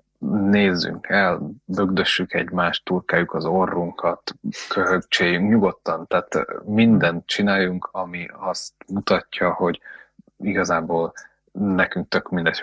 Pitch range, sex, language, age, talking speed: 90-100 Hz, male, Hungarian, 20-39, 95 wpm